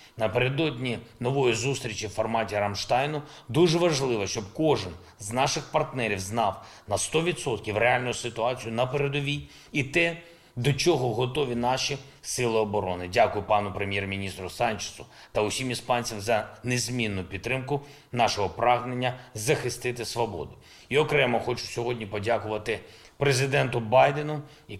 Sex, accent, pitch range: male, native, 105-145 Hz